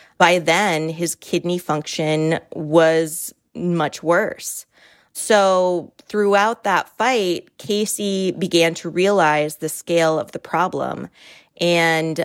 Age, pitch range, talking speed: 20-39, 155-175 Hz, 110 wpm